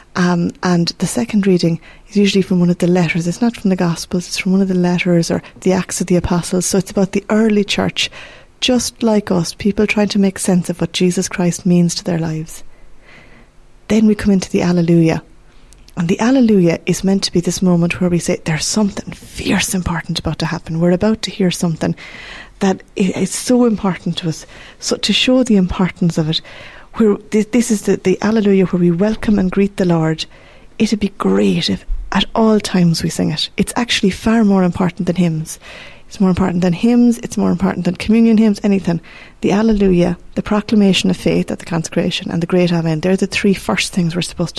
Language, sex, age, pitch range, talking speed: English, female, 30-49, 175-205 Hz, 210 wpm